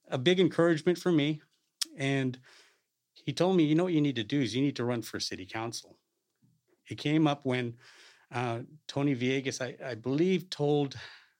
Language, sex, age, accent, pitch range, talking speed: English, male, 40-59, American, 120-145 Hz, 185 wpm